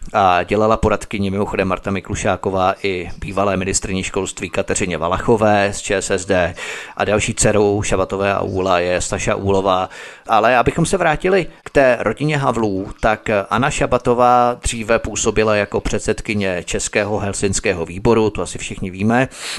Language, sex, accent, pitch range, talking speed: Czech, male, native, 100-125 Hz, 140 wpm